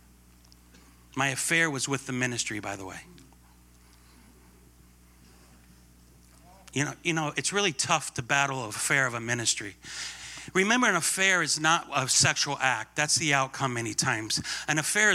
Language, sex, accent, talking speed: English, male, American, 150 wpm